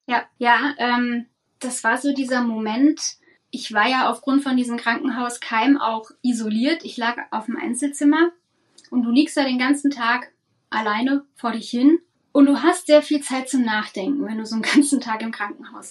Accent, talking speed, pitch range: German, 185 wpm, 240-295 Hz